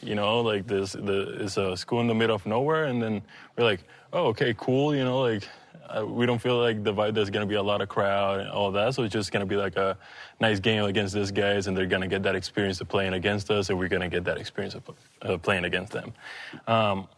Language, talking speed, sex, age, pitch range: English, 275 wpm, male, 20-39, 100-125 Hz